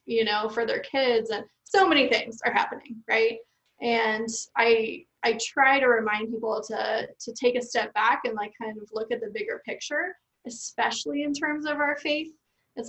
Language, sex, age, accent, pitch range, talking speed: English, female, 20-39, American, 220-265 Hz, 190 wpm